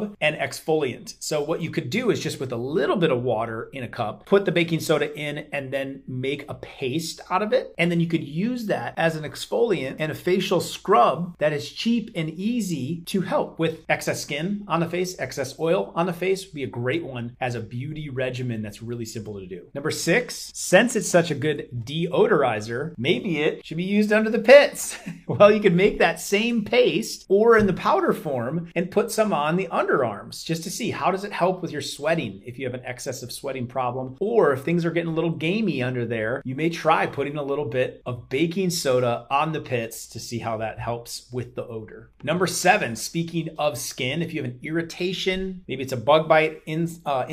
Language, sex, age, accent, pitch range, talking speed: English, male, 30-49, American, 130-180 Hz, 225 wpm